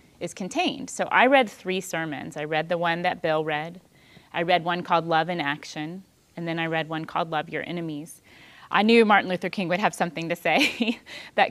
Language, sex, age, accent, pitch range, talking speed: English, female, 30-49, American, 160-190 Hz, 215 wpm